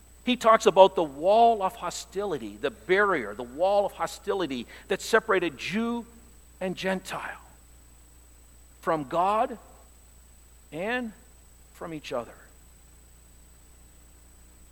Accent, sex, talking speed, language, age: American, male, 100 wpm, English, 50-69